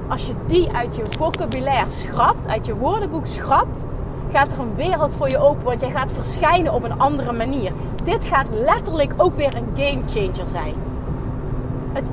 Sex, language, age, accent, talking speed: female, Dutch, 30-49, Dutch, 180 wpm